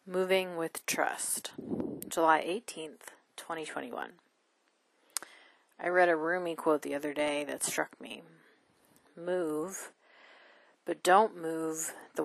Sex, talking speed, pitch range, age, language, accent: female, 110 wpm, 155-185 Hz, 30-49, English, American